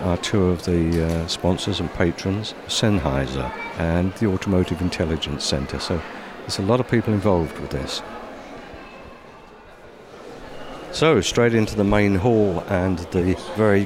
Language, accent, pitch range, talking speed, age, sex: English, British, 90-110 Hz, 140 wpm, 60-79, male